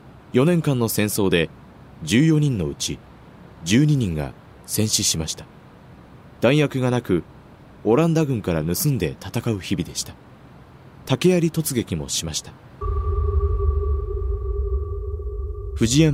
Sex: male